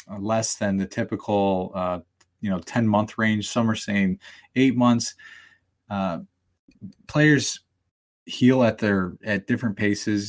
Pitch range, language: 95-110 Hz, English